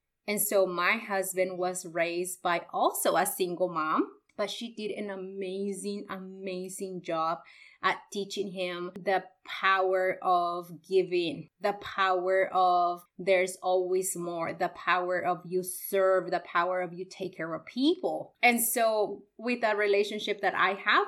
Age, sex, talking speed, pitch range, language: 30-49, female, 150 wpm, 180-210 Hz, English